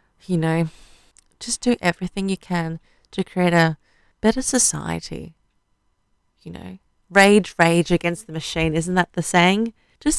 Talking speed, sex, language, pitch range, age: 140 wpm, female, English, 155-185 Hz, 30-49